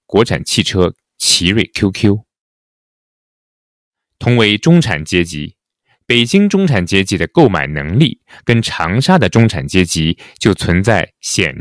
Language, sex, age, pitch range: Chinese, male, 30-49, 85-125 Hz